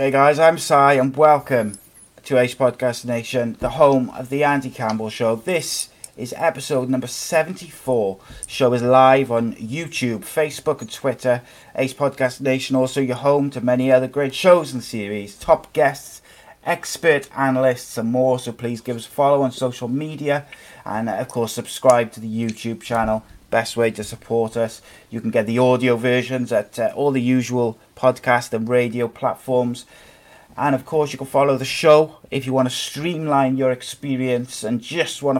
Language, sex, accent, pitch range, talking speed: English, male, British, 120-135 Hz, 180 wpm